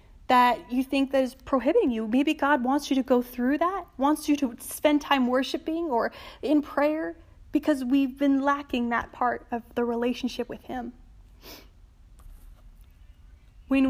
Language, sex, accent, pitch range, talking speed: English, female, American, 230-285 Hz, 155 wpm